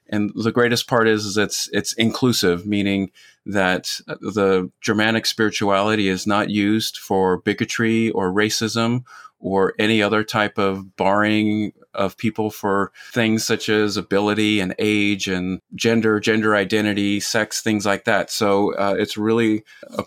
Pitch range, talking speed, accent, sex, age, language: 105-120 Hz, 145 wpm, American, male, 30-49, English